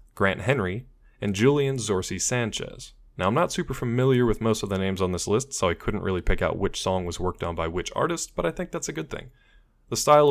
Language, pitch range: English, 95-130 Hz